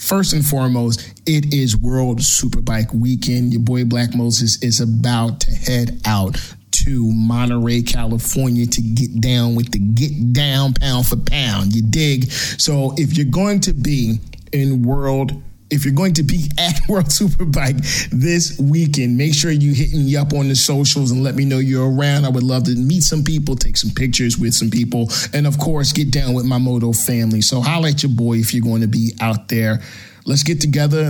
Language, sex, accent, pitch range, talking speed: English, male, American, 120-160 Hz, 200 wpm